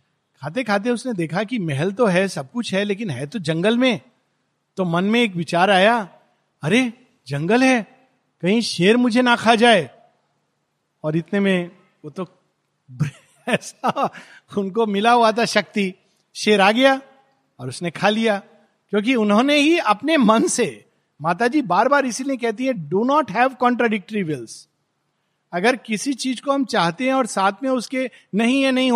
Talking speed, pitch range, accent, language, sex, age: 165 wpm, 175-245 Hz, native, Hindi, male, 50-69